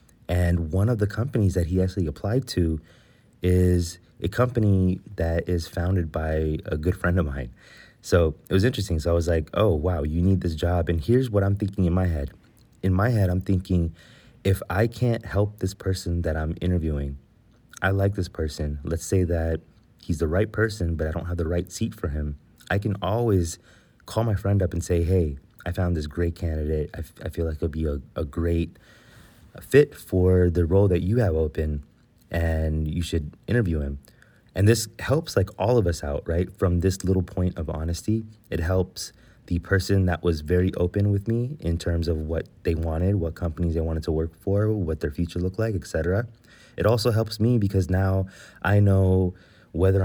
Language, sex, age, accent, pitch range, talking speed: English, male, 30-49, American, 85-100 Hz, 205 wpm